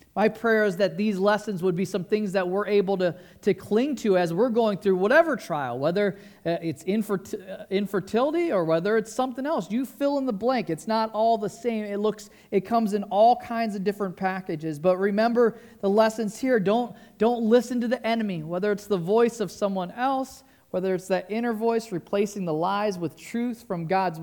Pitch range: 185-230 Hz